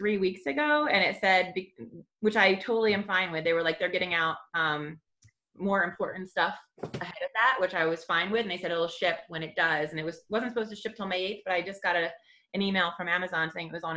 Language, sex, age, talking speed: English, female, 30-49, 260 wpm